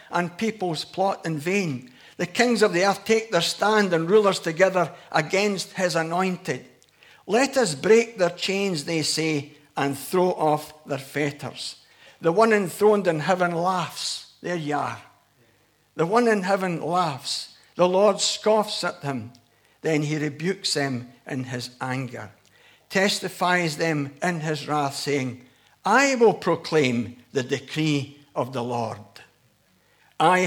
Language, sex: English, male